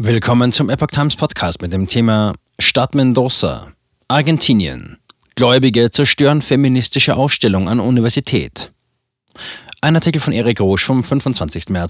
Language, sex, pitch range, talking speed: German, male, 100-130 Hz, 125 wpm